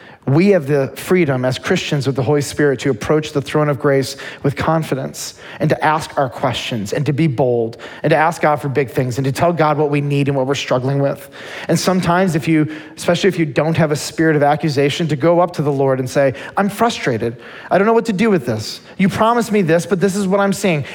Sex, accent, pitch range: male, American, 145-205 Hz